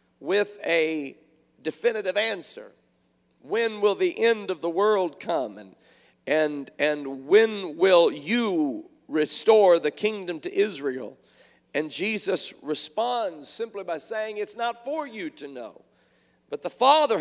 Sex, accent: male, American